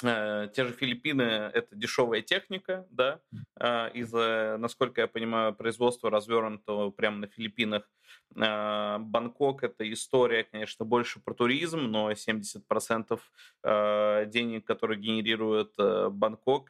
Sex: male